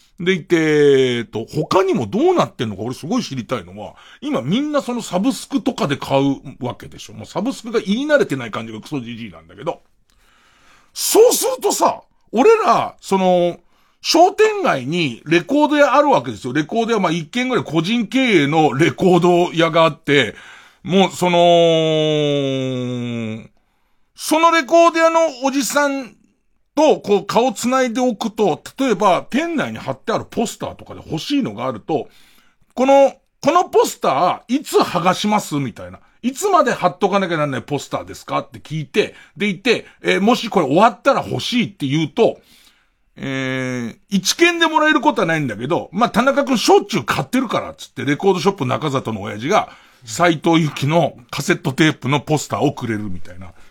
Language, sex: Japanese, male